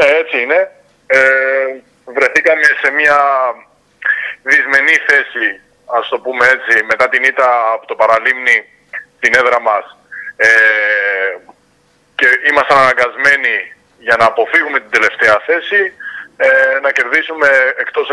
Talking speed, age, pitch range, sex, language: 120 wpm, 20-39, 130-180 Hz, male, Greek